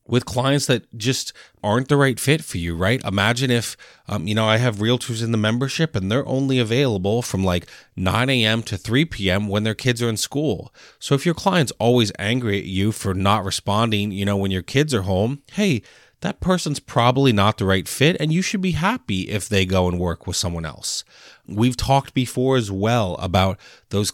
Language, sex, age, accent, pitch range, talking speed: English, male, 30-49, American, 95-125 Hz, 210 wpm